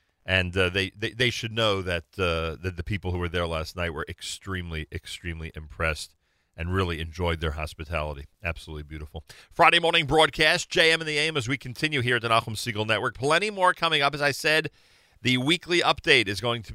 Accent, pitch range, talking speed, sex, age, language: American, 90-125 Hz, 205 wpm, male, 40-59, English